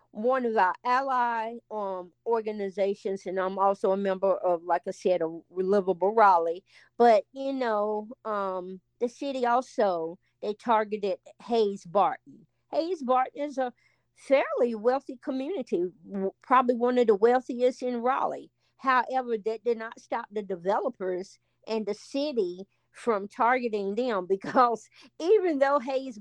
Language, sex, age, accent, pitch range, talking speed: English, female, 50-69, American, 195-255 Hz, 135 wpm